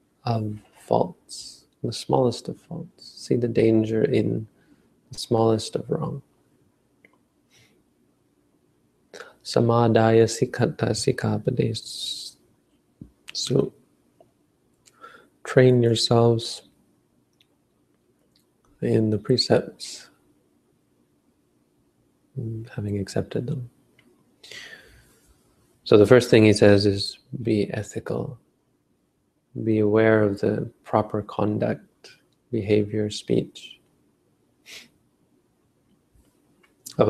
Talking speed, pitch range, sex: 70 wpm, 70-115 Hz, male